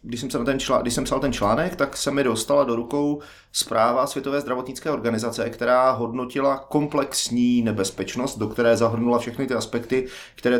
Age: 30-49